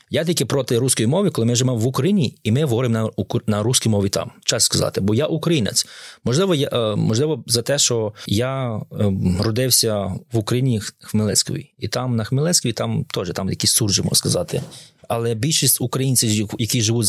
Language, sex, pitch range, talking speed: Ukrainian, male, 110-135 Hz, 180 wpm